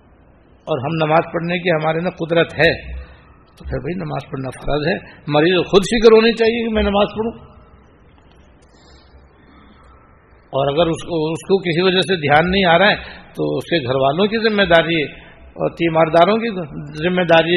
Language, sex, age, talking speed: Persian, male, 60-79, 115 wpm